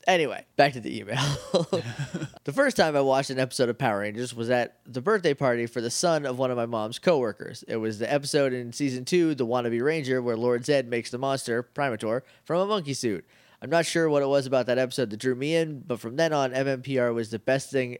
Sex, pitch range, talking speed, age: male, 120-145 Hz, 240 wpm, 20-39